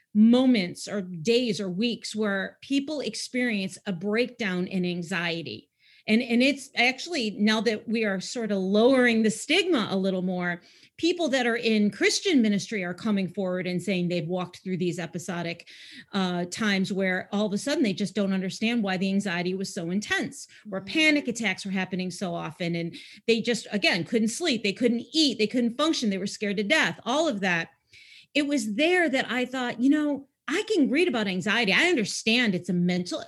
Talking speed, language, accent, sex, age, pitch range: 190 wpm, English, American, female, 40-59, 195-250 Hz